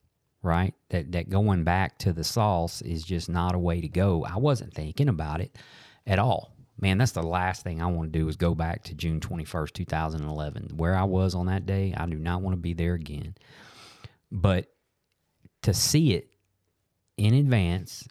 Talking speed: 200 wpm